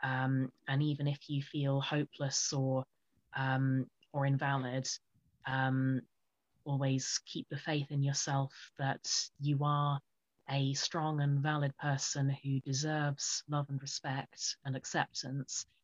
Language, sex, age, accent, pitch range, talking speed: English, female, 30-49, British, 135-145 Hz, 125 wpm